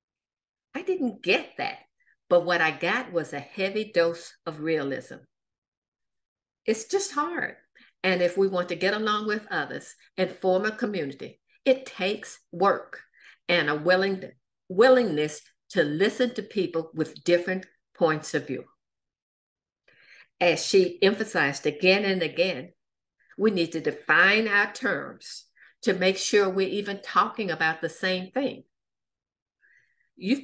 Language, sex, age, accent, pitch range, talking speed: English, female, 50-69, American, 165-220 Hz, 135 wpm